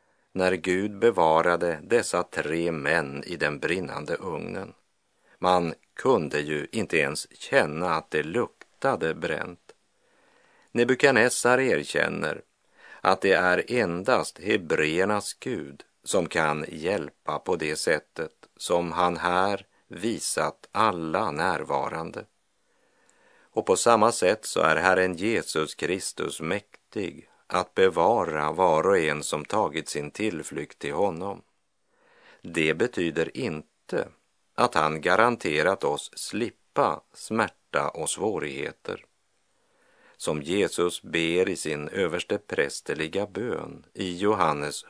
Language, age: English, 50-69